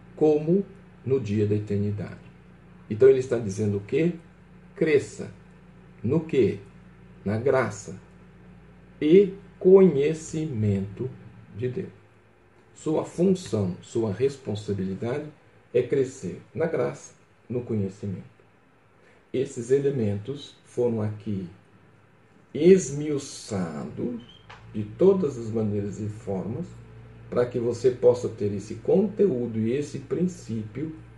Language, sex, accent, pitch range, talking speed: Portuguese, male, Brazilian, 100-135 Hz, 100 wpm